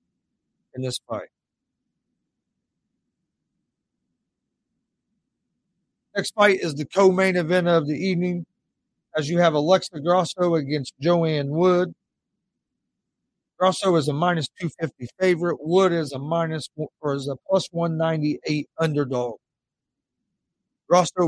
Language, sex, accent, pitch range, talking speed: English, male, American, 150-185 Hz, 105 wpm